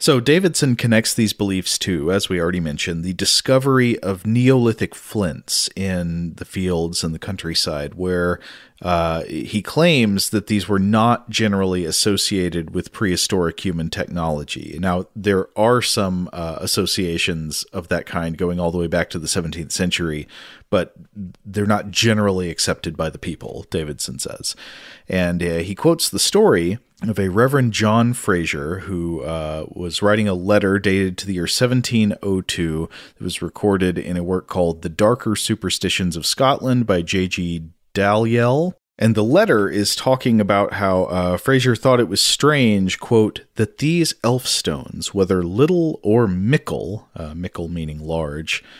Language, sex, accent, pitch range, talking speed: English, male, American, 90-115 Hz, 155 wpm